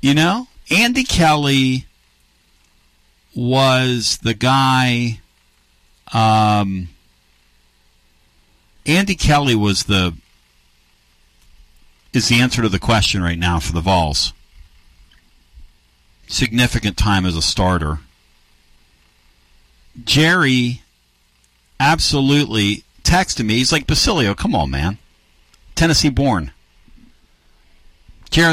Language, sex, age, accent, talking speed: English, male, 50-69, American, 85 wpm